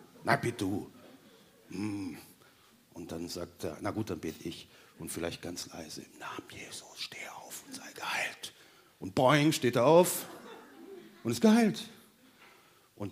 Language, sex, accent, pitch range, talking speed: German, male, German, 145-230 Hz, 145 wpm